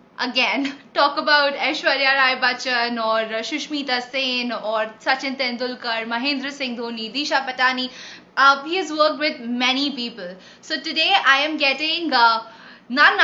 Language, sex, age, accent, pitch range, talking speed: Hindi, female, 20-39, native, 255-315 Hz, 140 wpm